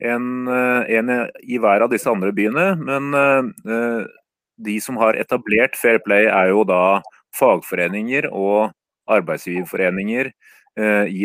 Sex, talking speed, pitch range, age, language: male, 115 wpm, 100-115 Hz, 30-49, Polish